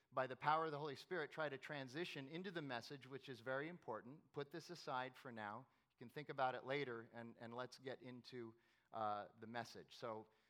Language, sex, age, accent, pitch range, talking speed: English, male, 40-59, American, 115-145 Hz, 215 wpm